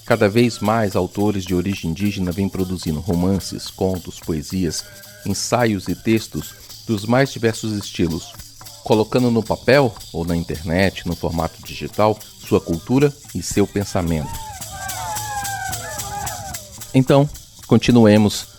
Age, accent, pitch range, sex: 40-59, Brazilian, 95-115 Hz, male